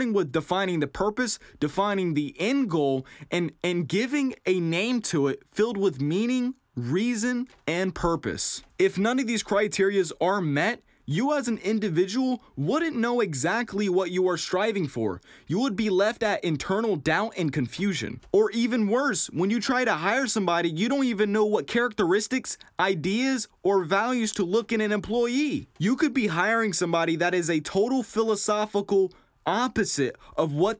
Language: English